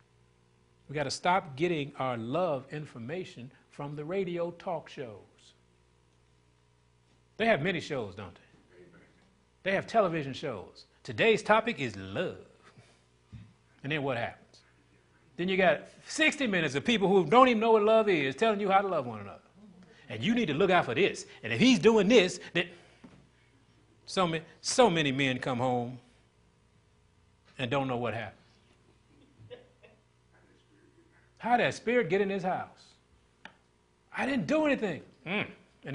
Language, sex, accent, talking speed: English, male, American, 155 wpm